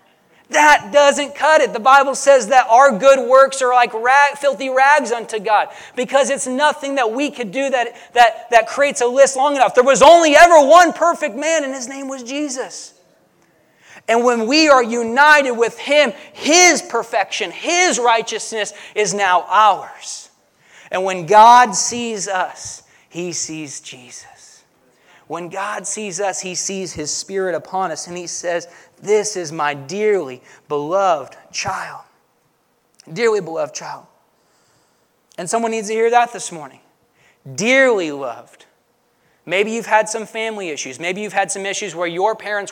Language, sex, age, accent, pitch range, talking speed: English, male, 30-49, American, 200-275 Hz, 155 wpm